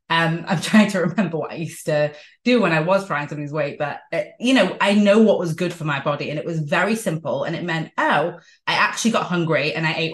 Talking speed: 265 wpm